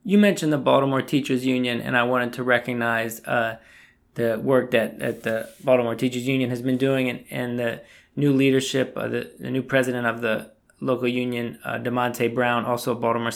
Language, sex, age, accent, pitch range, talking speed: English, male, 20-39, American, 115-130 Hz, 195 wpm